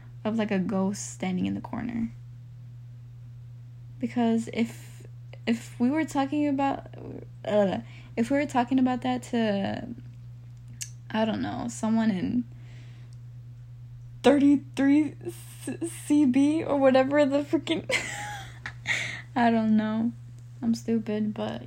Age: 10-29